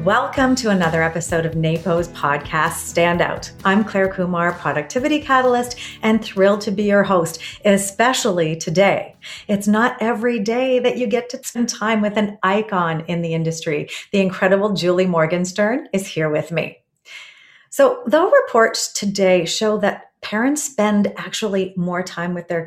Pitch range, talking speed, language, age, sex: 175-235 Hz, 155 wpm, English, 40-59, female